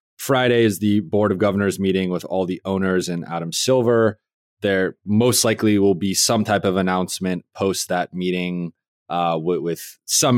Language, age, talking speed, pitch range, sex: English, 20-39, 175 wpm, 90-110 Hz, male